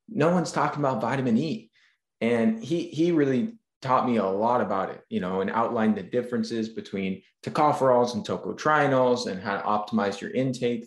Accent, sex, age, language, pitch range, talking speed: American, male, 20-39, English, 110-135 Hz, 175 wpm